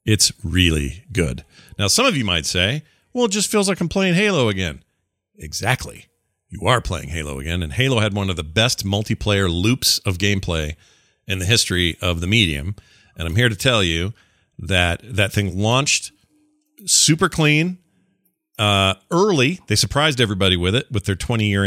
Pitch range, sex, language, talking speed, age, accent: 95-120 Hz, male, English, 175 wpm, 40-59, American